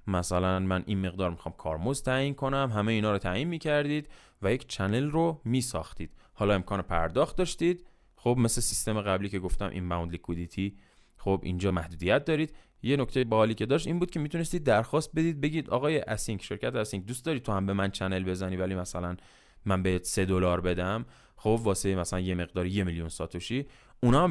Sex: male